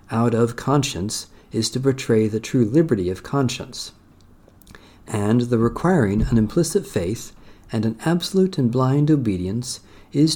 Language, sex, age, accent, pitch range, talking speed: English, male, 50-69, American, 100-135 Hz, 140 wpm